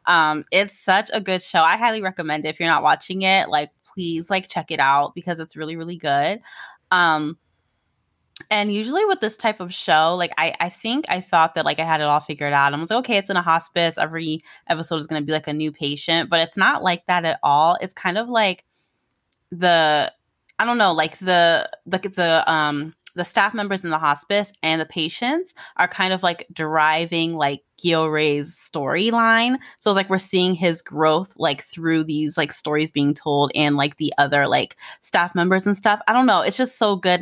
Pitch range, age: 155-190 Hz, 20-39